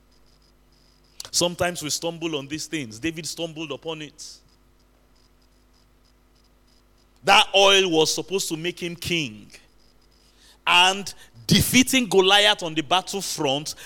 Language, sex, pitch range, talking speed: English, male, 130-185 Hz, 105 wpm